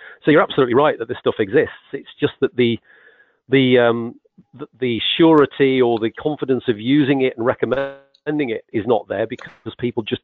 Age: 40-59